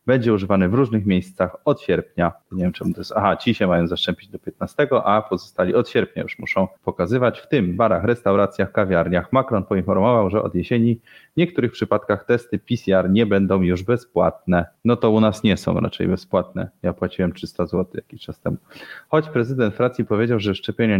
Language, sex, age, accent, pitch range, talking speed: Polish, male, 30-49, native, 90-110 Hz, 190 wpm